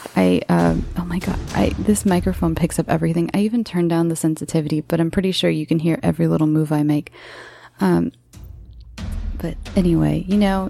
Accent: American